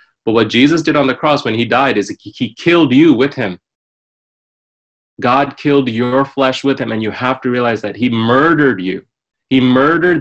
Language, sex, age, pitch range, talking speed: English, male, 30-49, 110-140 Hz, 195 wpm